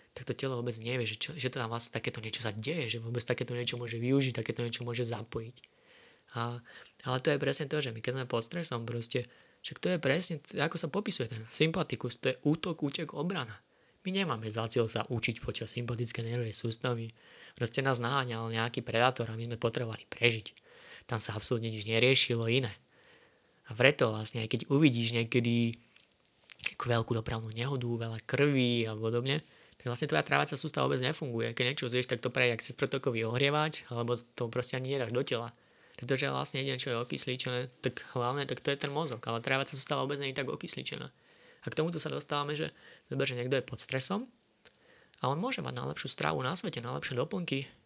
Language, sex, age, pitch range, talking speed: Slovak, male, 20-39, 115-140 Hz, 195 wpm